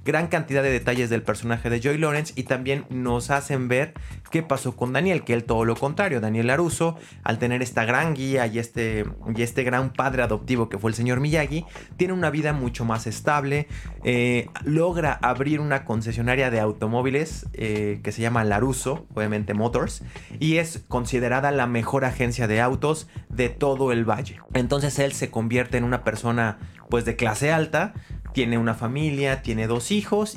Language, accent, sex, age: Spanish, Mexican, male, 30-49